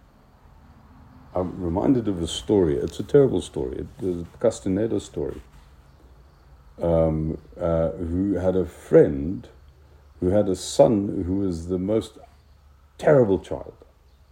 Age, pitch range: 60-79, 75-95 Hz